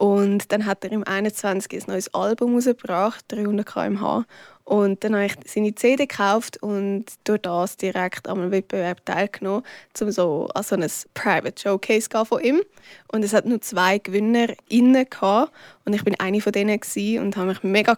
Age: 20-39